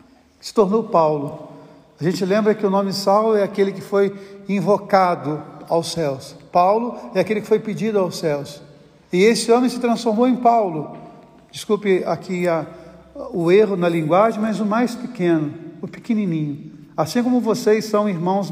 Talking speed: 160 wpm